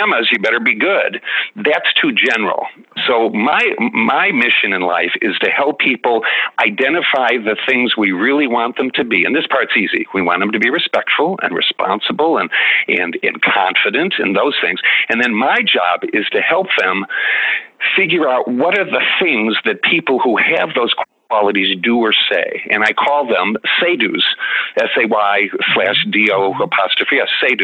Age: 50-69